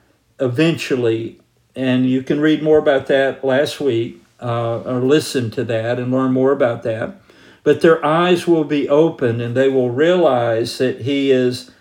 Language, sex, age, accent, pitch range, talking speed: English, male, 50-69, American, 120-150 Hz, 170 wpm